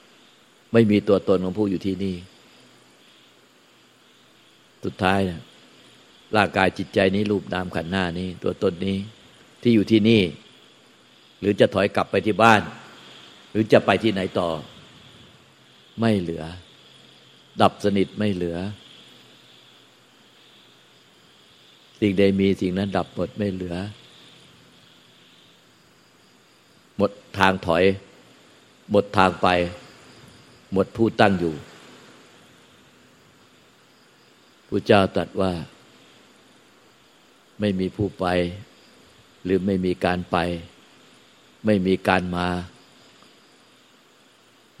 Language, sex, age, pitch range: Thai, male, 60-79, 90-100 Hz